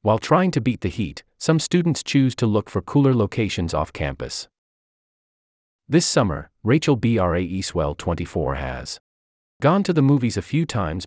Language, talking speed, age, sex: English, 165 wpm, 30-49, male